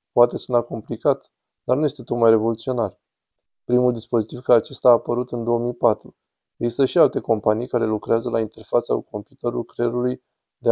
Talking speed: 155 wpm